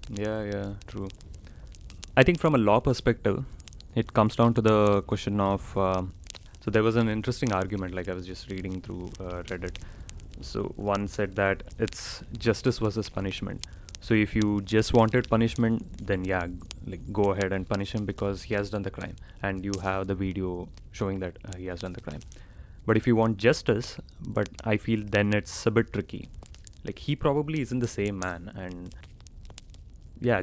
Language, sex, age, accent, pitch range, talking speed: English, male, 20-39, Indian, 90-110 Hz, 185 wpm